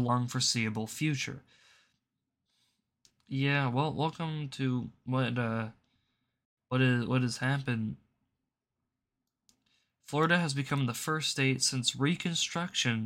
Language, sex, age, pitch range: English, male, 20-39, 120-155 Hz